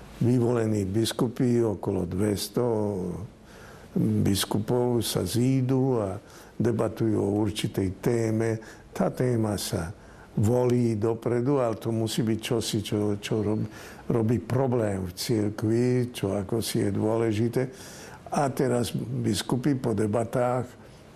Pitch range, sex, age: 105-120 Hz, male, 60-79